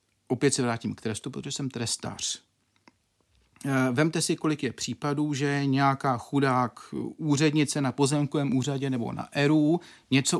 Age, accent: 40-59, Czech